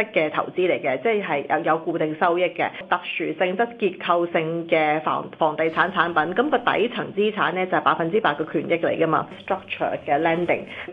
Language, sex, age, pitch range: Chinese, female, 30-49, 160-200 Hz